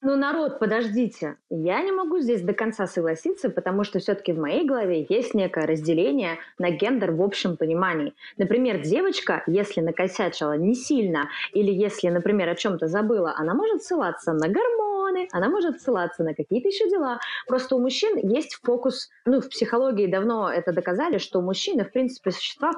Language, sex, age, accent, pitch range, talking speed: Russian, female, 20-39, native, 170-245 Hz, 170 wpm